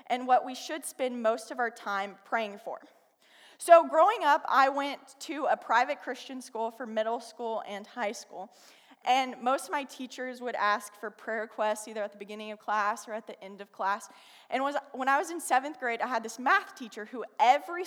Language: English